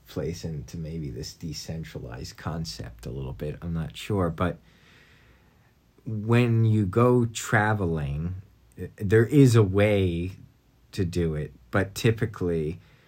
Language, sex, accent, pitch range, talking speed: English, male, American, 80-100 Hz, 120 wpm